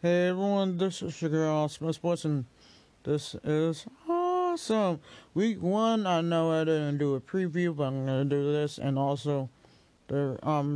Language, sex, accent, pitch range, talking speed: English, male, American, 140-160 Hz, 175 wpm